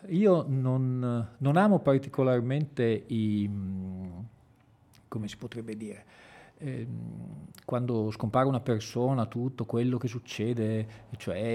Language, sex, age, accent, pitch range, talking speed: Italian, male, 40-59, native, 110-145 Hz, 105 wpm